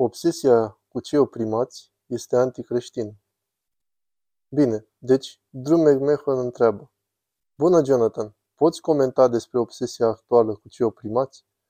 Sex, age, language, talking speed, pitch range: male, 20-39, Romanian, 110 wpm, 115-135 Hz